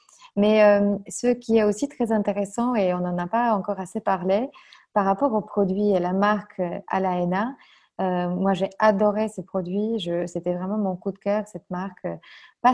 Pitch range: 180-210 Hz